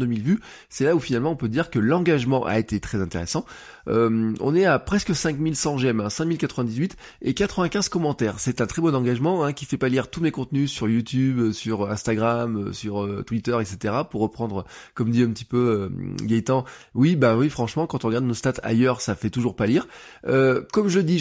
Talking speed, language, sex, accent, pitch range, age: 215 wpm, French, male, French, 110-145 Hz, 20-39